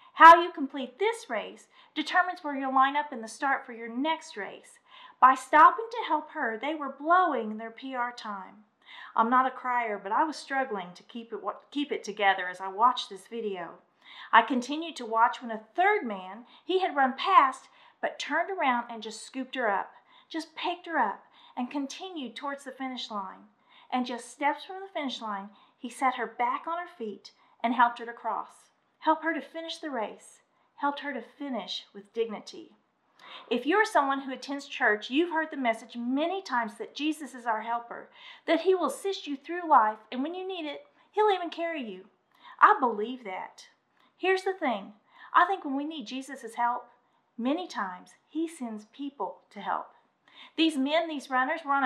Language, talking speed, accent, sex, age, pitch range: English, 190 wpm, American, female, 40-59, 230-320 Hz